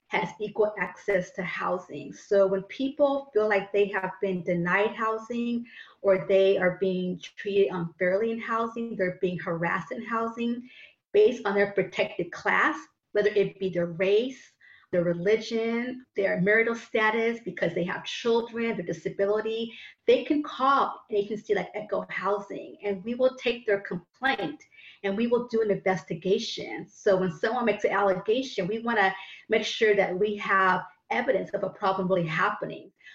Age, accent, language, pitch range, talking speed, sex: 30-49, American, English, 185-220 Hz, 160 wpm, female